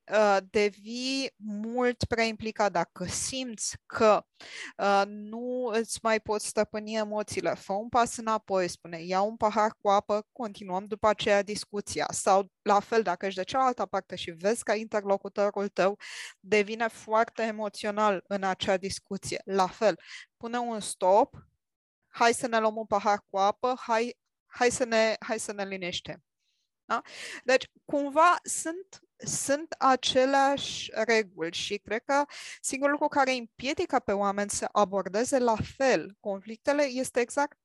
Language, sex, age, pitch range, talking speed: Romanian, female, 20-39, 205-255 Hz, 140 wpm